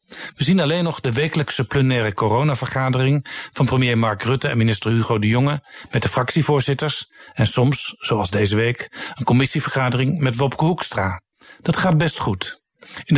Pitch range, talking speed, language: 115-150 Hz, 160 wpm, Dutch